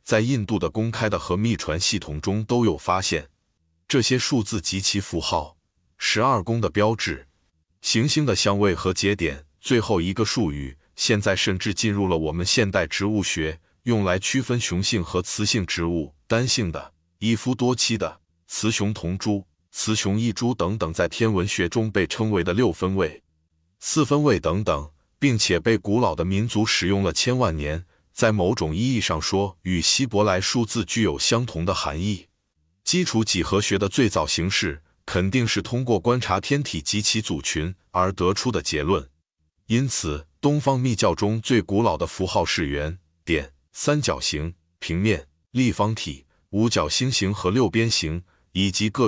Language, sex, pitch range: Chinese, male, 85-110 Hz